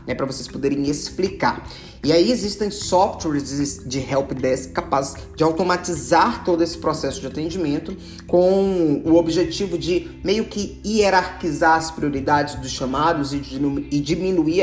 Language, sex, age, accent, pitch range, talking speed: Portuguese, male, 20-39, Brazilian, 135-175 Hz, 135 wpm